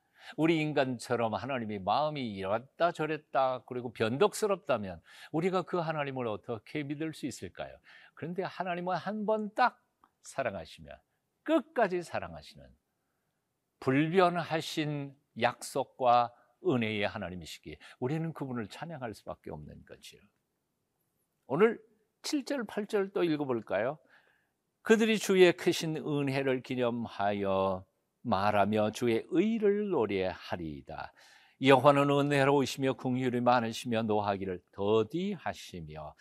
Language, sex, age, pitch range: Korean, male, 50-69, 110-170 Hz